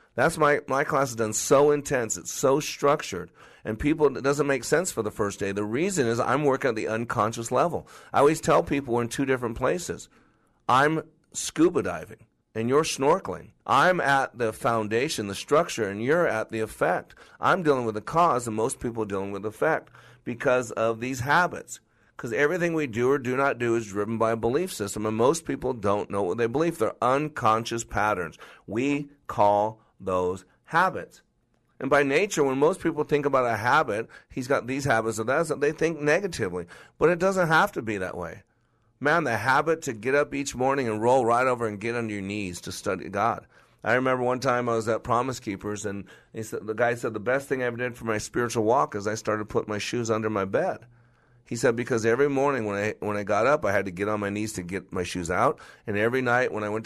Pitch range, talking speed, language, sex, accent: 105-140 Hz, 225 wpm, English, male, American